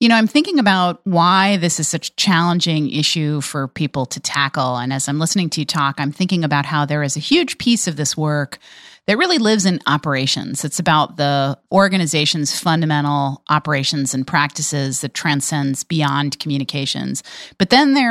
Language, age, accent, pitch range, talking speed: English, 30-49, American, 145-185 Hz, 180 wpm